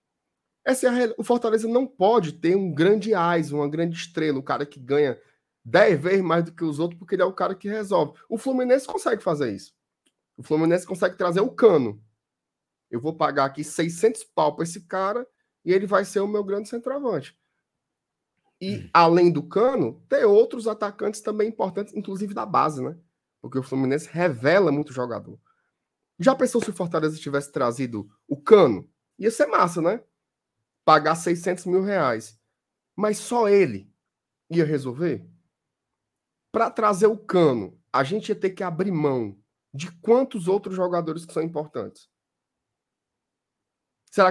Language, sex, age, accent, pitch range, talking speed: Portuguese, male, 20-39, Brazilian, 155-215 Hz, 165 wpm